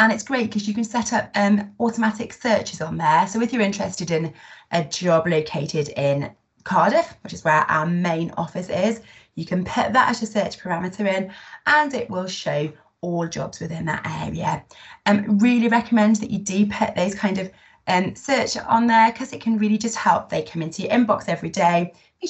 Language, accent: English, British